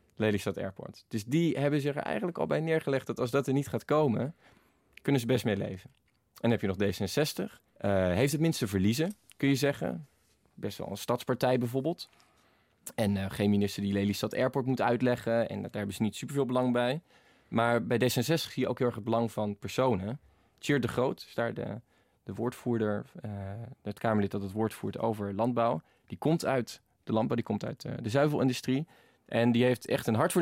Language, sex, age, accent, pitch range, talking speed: Dutch, male, 20-39, Dutch, 110-140 Hz, 205 wpm